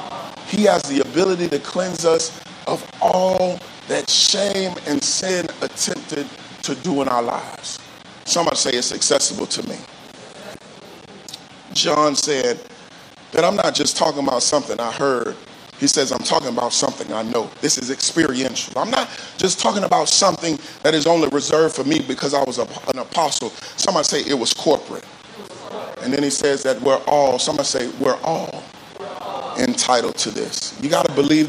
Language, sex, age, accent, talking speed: English, male, 40-59, American, 170 wpm